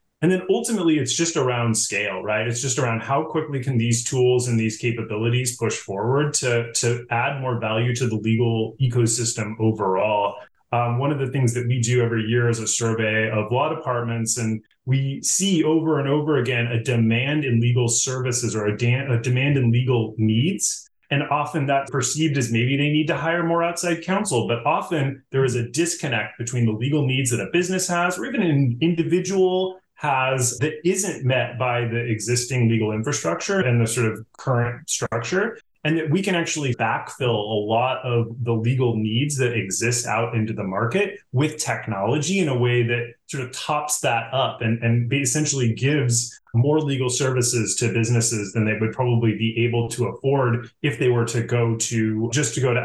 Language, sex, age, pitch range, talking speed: English, male, 30-49, 115-145 Hz, 190 wpm